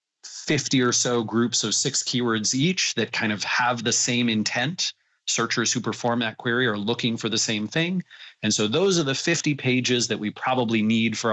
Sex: male